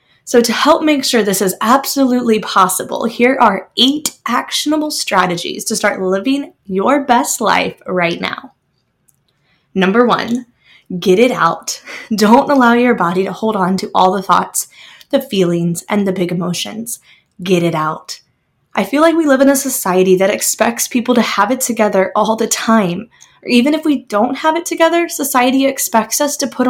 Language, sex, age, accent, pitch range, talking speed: English, female, 20-39, American, 190-265 Hz, 175 wpm